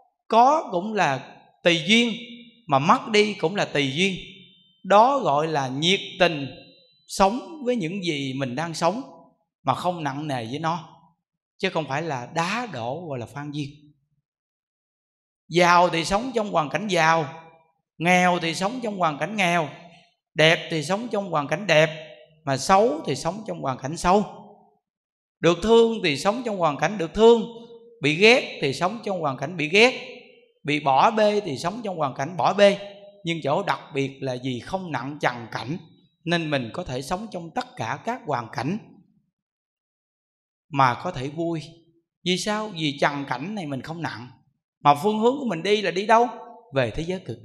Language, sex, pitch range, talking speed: Vietnamese, male, 145-205 Hz, 180 wpm